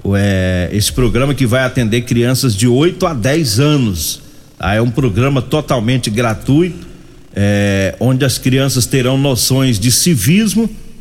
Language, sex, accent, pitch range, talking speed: Portuguese, male, Brazilian, 115-155 Hz, 125 wpm